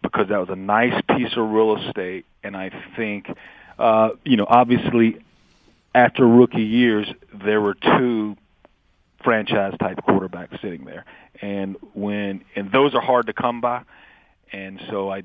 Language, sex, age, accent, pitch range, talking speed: English, male, 40-59, American, 95-110 Hz, 145 wpm